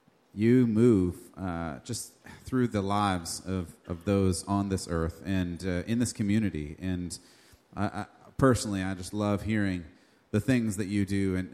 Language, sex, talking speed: English, male, 155 wpm